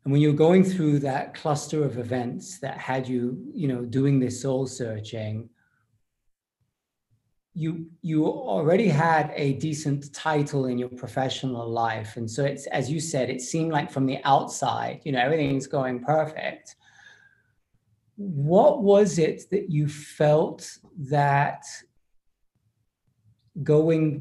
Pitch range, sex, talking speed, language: 125-155 Hz, male, 135 wpm, English